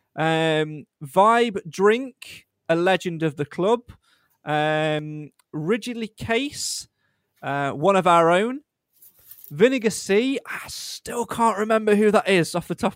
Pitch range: 150-210 Hz